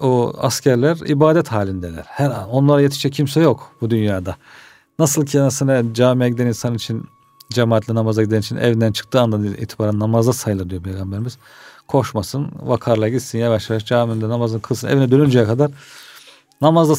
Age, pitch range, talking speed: 40-59, 115-145 Hz, 150 wpm